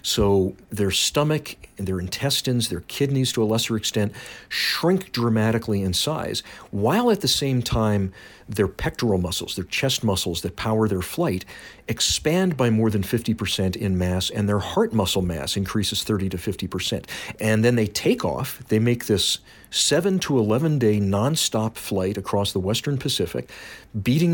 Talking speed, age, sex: 165 wpm, 50-69, male